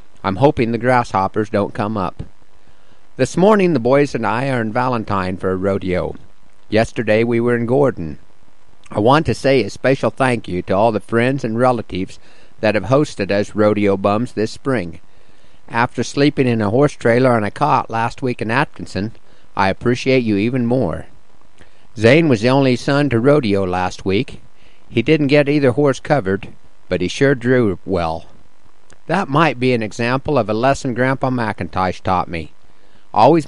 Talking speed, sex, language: 175 wpm, male, English